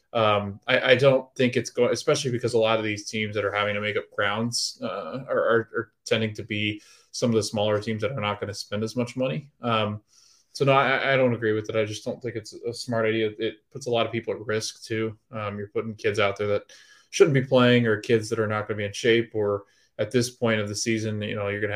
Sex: male